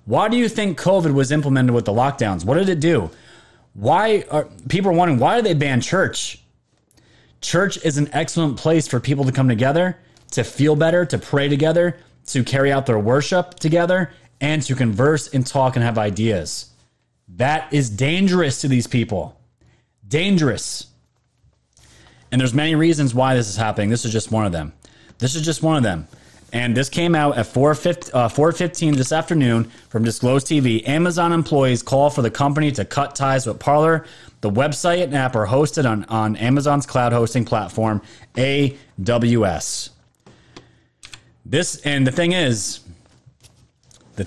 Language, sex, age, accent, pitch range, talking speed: English, male, 30-49, American, 115-155 Hz, 165 wpm